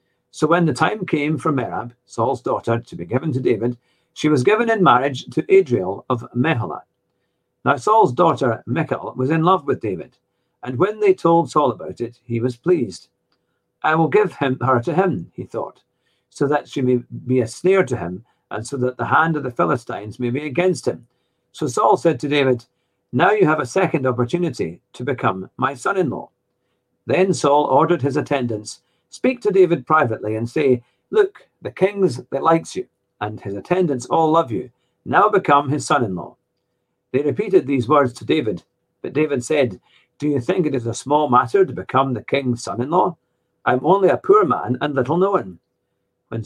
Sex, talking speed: male, 185 wpm